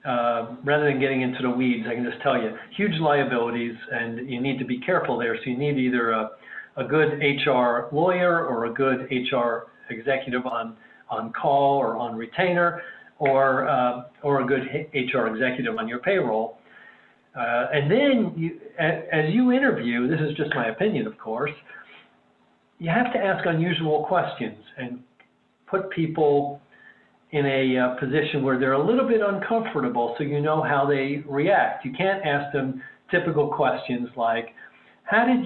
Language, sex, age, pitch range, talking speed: English, male, 50-69, 125-170 Hz, 165 wpm